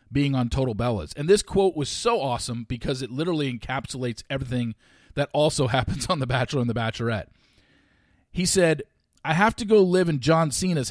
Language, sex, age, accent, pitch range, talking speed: English, male, 40-59, American, 120-165 Hz, 185 wpm